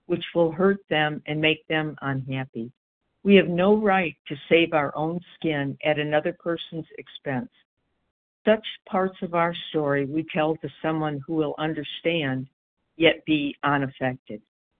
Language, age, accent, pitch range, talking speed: English, 60-79, American, 145-180 Hz, 145 wpm